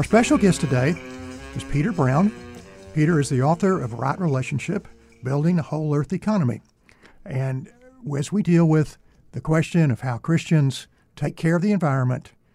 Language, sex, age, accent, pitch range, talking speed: English, male, 60-79, American, 135-170 Hz, 165 wpm